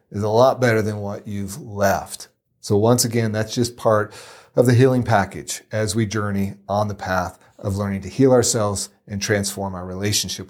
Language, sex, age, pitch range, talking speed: English, male, 40-59, 100-125 Hz, 190 wpm